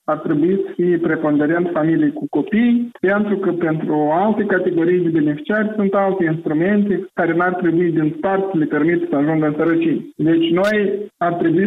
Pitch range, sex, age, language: 150-190 Hz, male, 50-69, Romanian